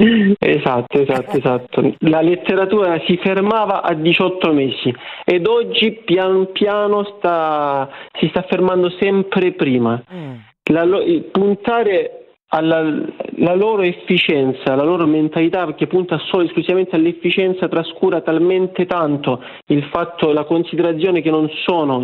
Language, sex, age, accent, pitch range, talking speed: Italian, male, 40-59, native, 140-175 Hz, 130 wpm